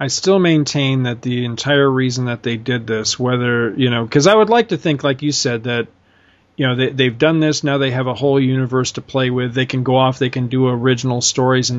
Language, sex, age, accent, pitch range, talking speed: English, male, 40-59, American, 120-145 Hz, 250 wpm